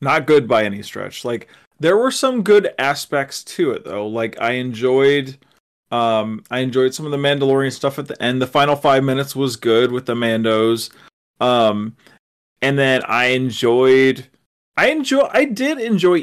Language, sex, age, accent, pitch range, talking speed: English, male, 30-49, American, 120-150 Hz, 175 wpm